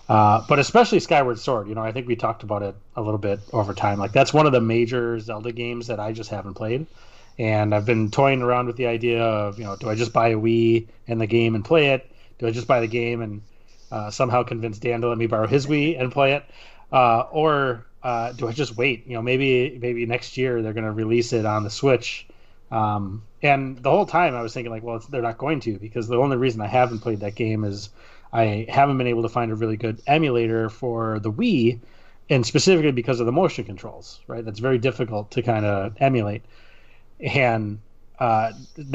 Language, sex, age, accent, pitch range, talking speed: English, male, 30-49, American, 110-125 Hz, 230 wpm